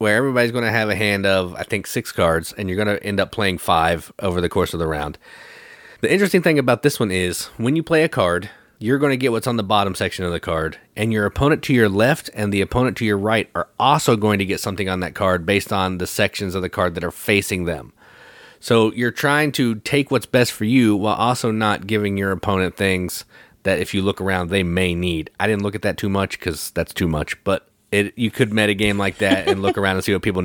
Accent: American